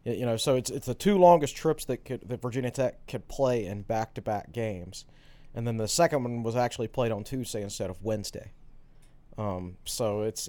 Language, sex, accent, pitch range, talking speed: English, male, American, 110-140 Hz, 200 wpm